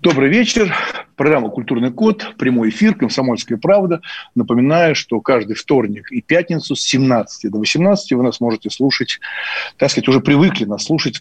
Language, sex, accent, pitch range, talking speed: Russian, male, native, 125-195 Hz, 155 wpm